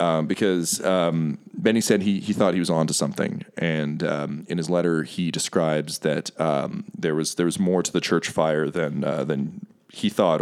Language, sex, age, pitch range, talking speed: English, male, 30-49, 80-95 Hz, 205 wpm